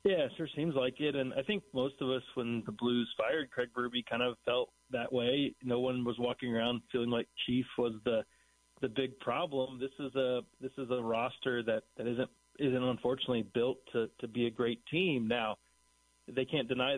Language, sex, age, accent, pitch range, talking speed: English, male, 30-49, American, 115-130 Hz, 205 wpm